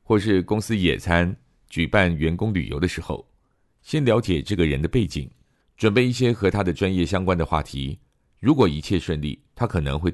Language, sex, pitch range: Chinese, male, 75-100 Hz